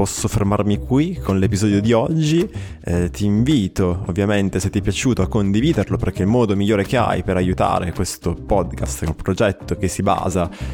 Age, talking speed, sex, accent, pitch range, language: 20-39, 185 wpm, male, native, 95-120 Hz, Italian